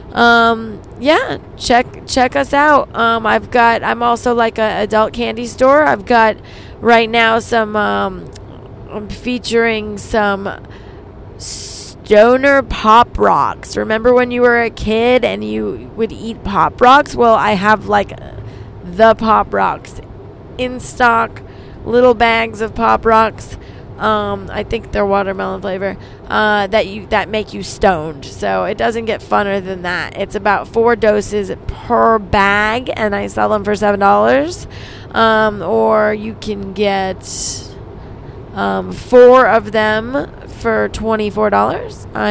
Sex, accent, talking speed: female, American, 140 wpm